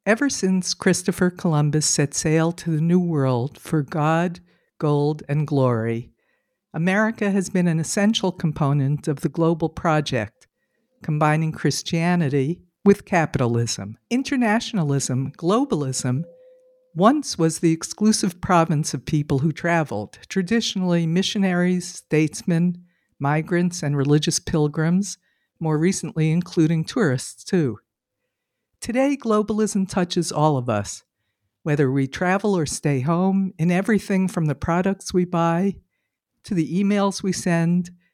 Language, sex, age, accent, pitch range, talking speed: English, female, 60-79, American, 150-190 Hz, 120 wpm